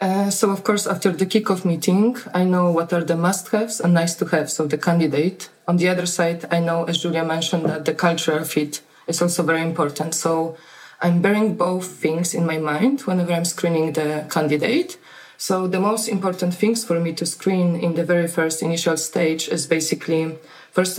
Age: 20-39